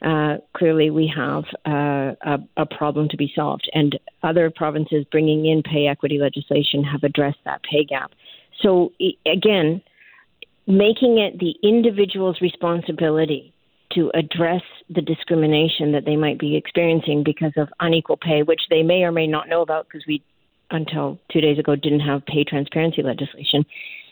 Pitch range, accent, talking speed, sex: 150-175 Hz, American, 155 wpm, female